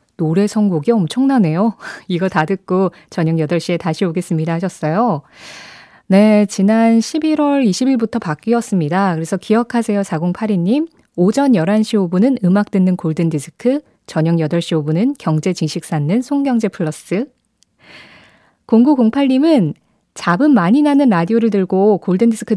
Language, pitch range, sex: Korean, 170-230 Hz, female